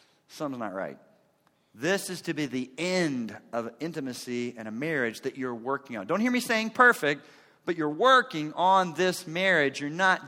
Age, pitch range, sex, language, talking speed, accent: 40-59, 130-190 Hz, male, English, 180 wpm, American